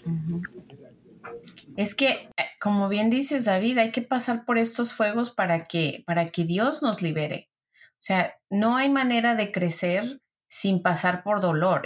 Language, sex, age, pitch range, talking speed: Spanish, female, 30-49, 175-230 Hz, 145 wpm